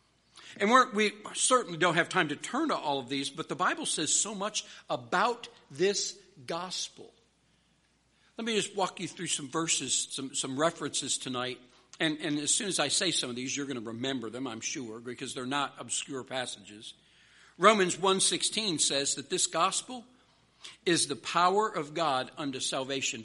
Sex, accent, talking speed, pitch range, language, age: male, American, 180 wpm, 140-220 Hz, English, 60-79